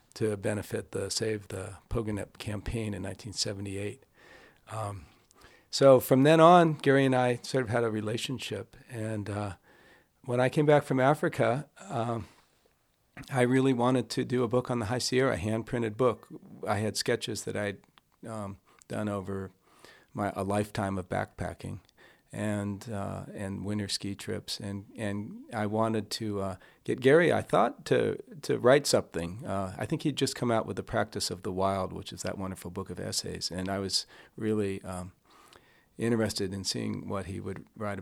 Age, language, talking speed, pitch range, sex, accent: 40-59, English, 175 wpm, 100-125 Hz, male, American